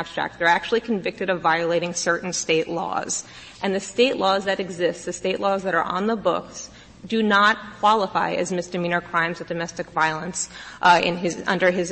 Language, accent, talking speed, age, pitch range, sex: English, American, 170 wpm, 30-49, 175-205 Hz, female